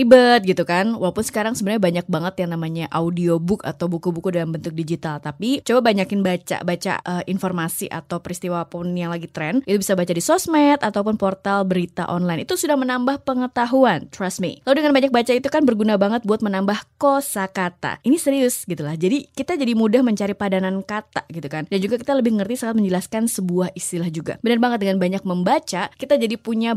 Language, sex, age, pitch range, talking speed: Indonesian, female, 20-39, 175-235 Hz, 190 wpm